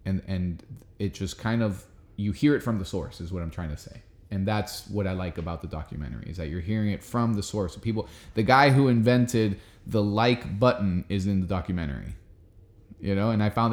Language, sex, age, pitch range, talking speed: English, male, 20-39, 100-120 Hz, 225 wpm